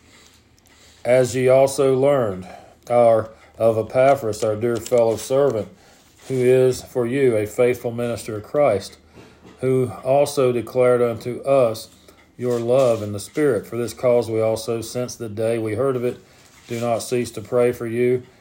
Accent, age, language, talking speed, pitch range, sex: American, 40-59, English, 160 wpm, 105-125 Hz, male